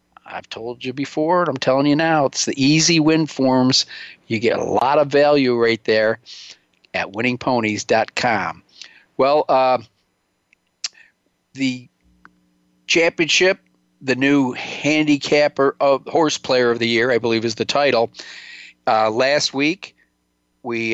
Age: 50-69